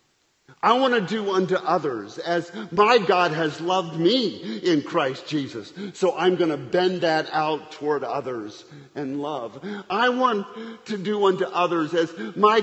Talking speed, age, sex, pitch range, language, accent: 160 wpm, 50-69, male, 140-185 Hz, English, American